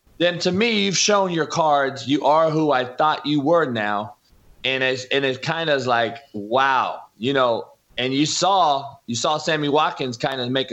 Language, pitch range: English, 120-155 Hz